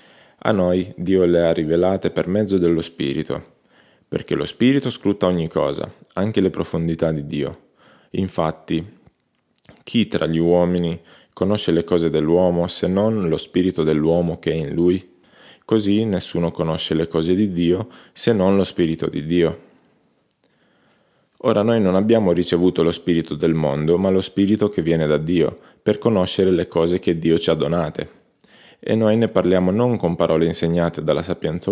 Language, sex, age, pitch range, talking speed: Italian, male, 20-39, 85-95 Hz, 165 wpm